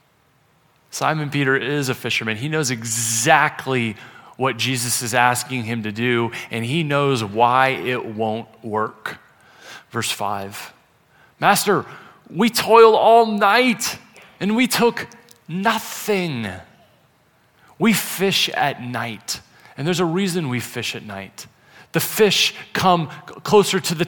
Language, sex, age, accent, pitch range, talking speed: English, male, 30-49, American, 125-180 Hz, 125 wpm